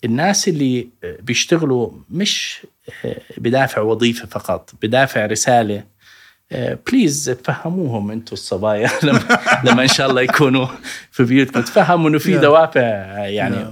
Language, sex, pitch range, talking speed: Arabic, male, 115-155 Hz, 110 wpm